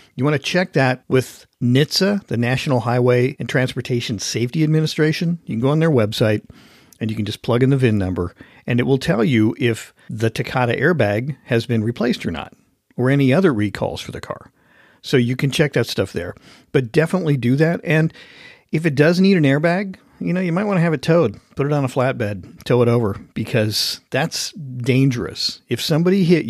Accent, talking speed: American, 205 wpm